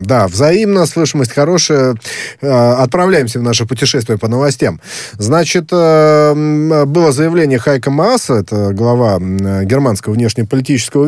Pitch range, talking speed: 115-155 Hz, 105 wpm